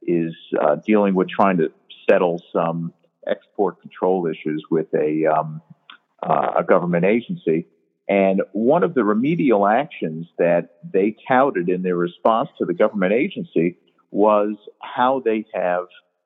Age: 50-69